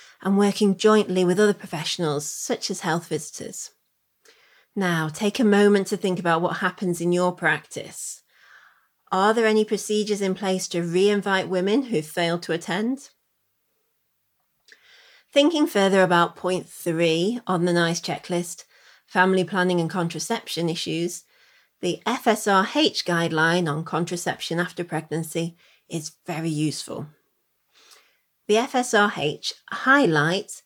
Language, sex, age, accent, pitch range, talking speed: English, female, 30-49, British, 170-210 Hz, 120 wpm